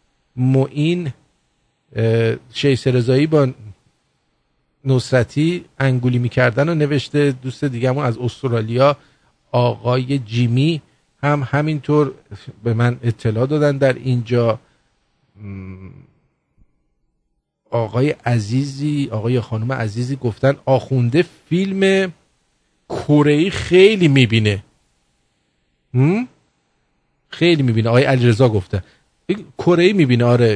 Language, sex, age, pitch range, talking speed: English, male, 50-69, 120-160 Hz, 85 wpm